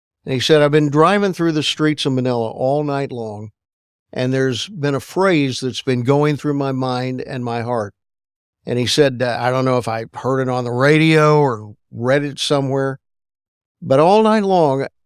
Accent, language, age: American, English, 50-69